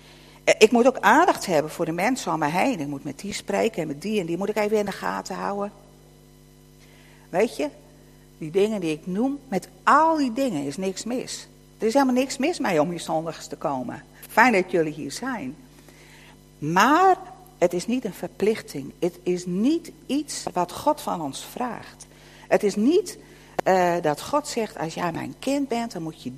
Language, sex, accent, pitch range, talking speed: Dutch, female, Dutch, 170-250 Hz, 200 wpm